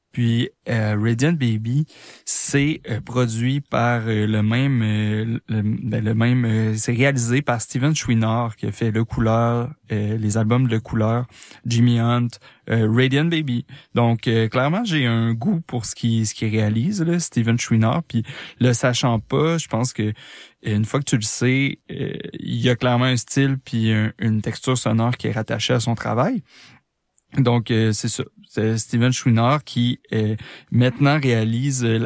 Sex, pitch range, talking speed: male, 115-135 Hz, 175 wpm